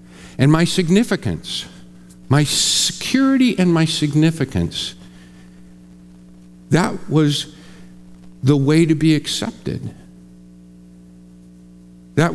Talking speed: 80 wpm